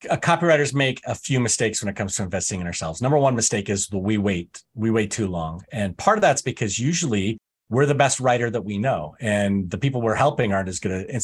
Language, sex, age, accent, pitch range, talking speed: English, male, 30-49, American, 105-140 Hz, 240 wpm